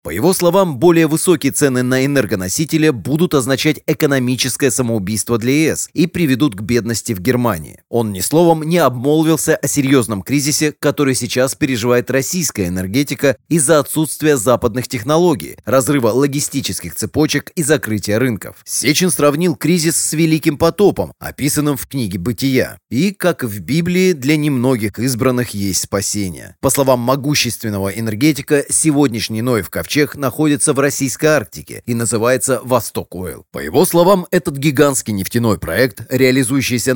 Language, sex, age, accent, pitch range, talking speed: Russian, male, 30-49, native, 115-150 Hz, 135 wpm